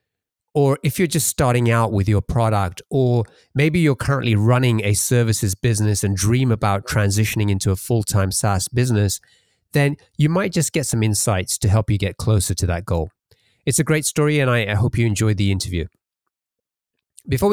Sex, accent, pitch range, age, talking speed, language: male, British, 105-125 Hz, 30-49, 185 wpm, English